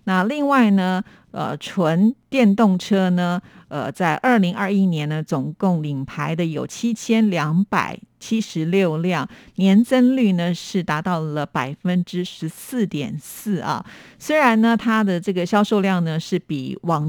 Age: 50-69